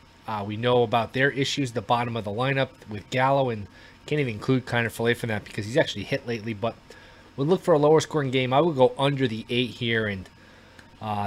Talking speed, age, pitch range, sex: 240 wpm, 20-39, 115-145 Hz, male